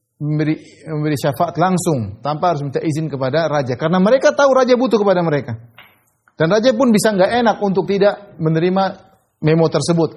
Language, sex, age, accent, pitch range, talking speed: Indonesian, male, 30-49, native, 115-180 Hz, 160 wpm